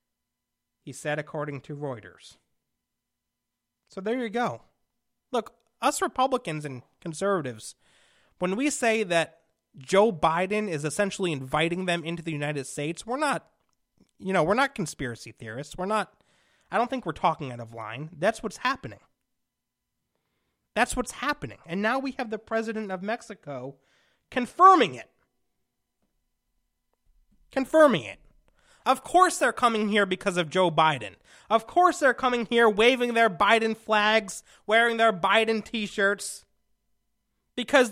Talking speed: 140 wpm